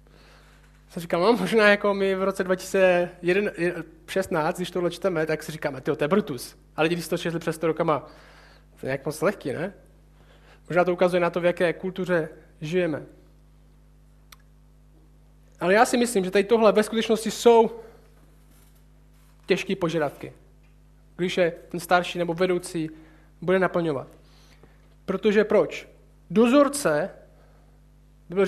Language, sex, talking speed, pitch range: Czech, male, 135 wpm, 170-215 Hz